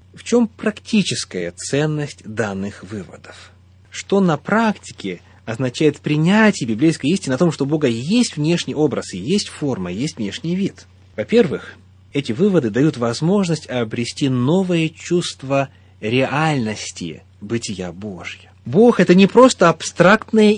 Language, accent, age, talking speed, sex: Russian, native, 30-49, 120 wpm, male